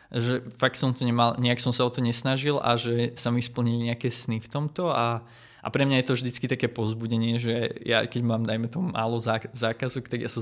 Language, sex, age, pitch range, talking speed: Slovak, male, 20-39, 115-125 Hz, 230 wpm